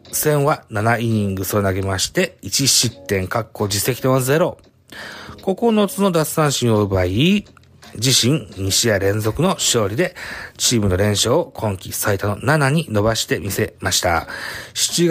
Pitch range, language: 100-135 Hz, Japanese